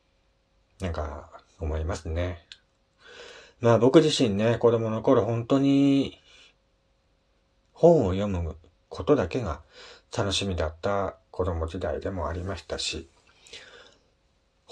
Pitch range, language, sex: 90-120 Hz, Japanese, male